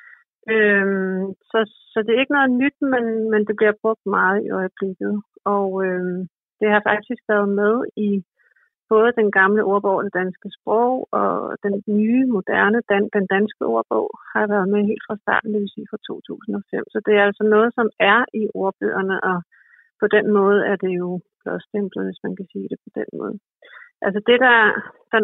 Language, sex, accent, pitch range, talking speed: Danish, female, native, 195-220 Hz, 185 wpm